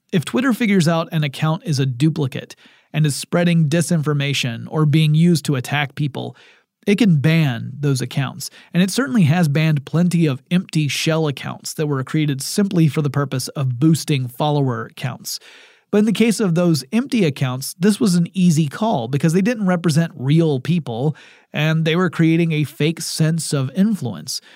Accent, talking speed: American, 180 wpm